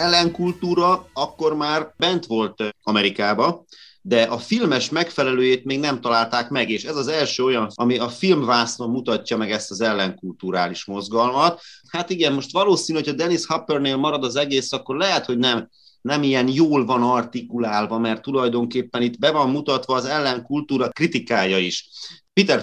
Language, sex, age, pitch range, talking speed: Hungarian, male, 30-49, 115-150 Hz, 155 wpm